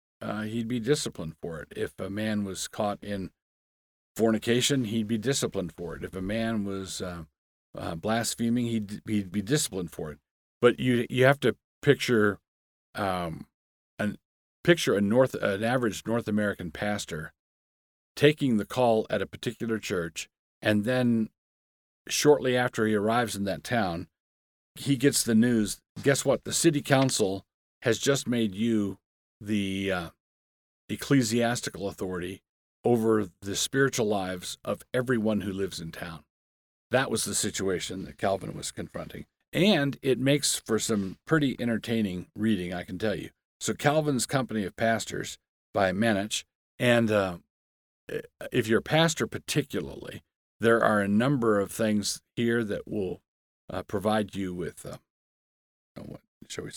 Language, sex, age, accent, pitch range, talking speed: English, male, 50-69, American, 95-120 Hz, 150 wpm